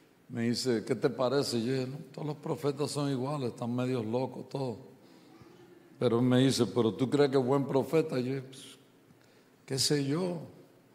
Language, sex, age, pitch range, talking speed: English, male, 60-79, 125-150 Hz, 180 wpm